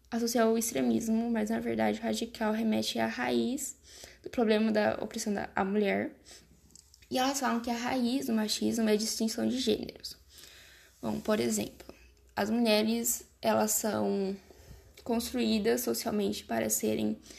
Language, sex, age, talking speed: Portuguese, female, 10-29, 140 wpm